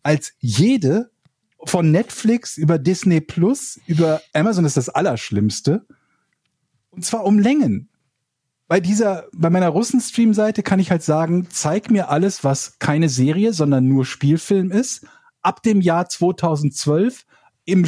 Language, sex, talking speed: German, male, 135 wpm